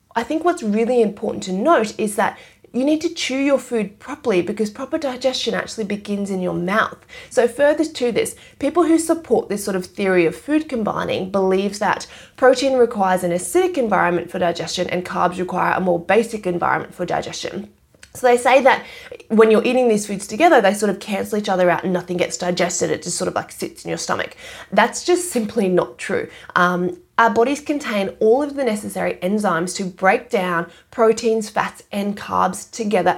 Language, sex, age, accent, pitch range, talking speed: English, female, 20-39, Australian, 185-265 Hz, 195 wpm